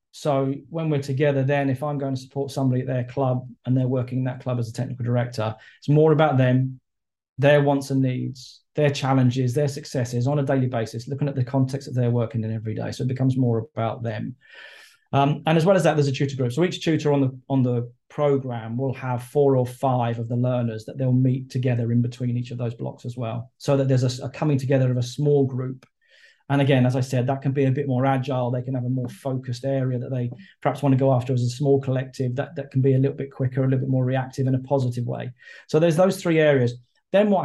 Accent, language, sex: British, English, male